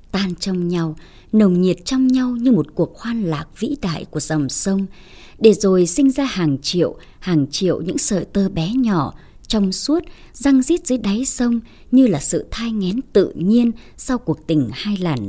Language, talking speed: Vietnamese, 190 wpm